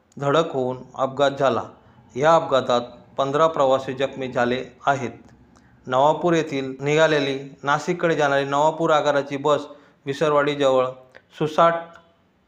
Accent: native